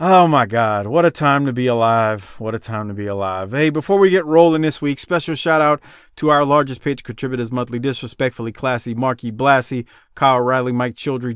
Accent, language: American, English